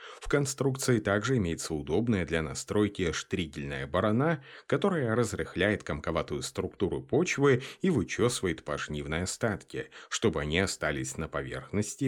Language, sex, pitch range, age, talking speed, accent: Russian, male, 80-120 Hz, 30-49, 115 wpm, native